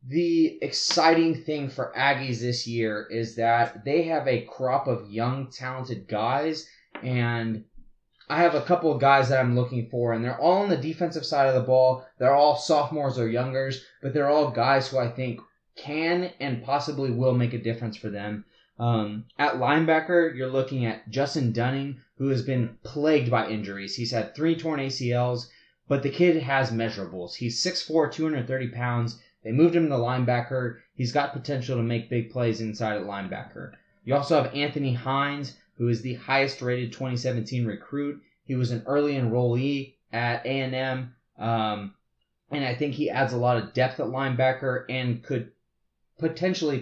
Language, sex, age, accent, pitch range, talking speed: English, male, 20-39, American, 120-145 Hz, 175 wpm